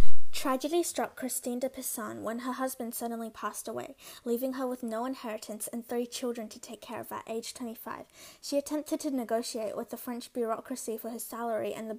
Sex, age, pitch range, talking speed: female, 20-39, 225-275 Hz, 195 wpm